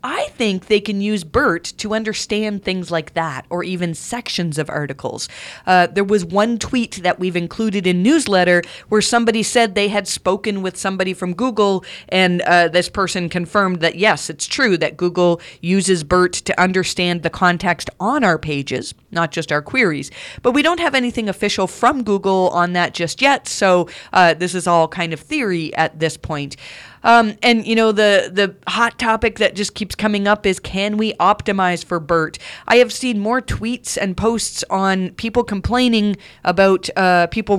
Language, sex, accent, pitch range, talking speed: English, female, American, 175-215 Hz, 185 wpm